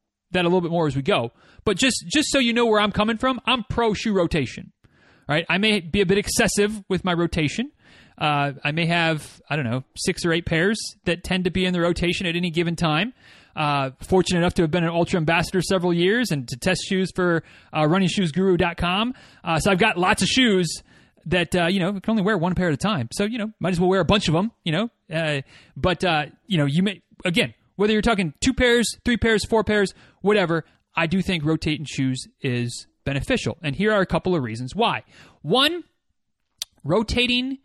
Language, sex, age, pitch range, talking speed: English, male, 30-49, 165-215 Hz, 225 wpm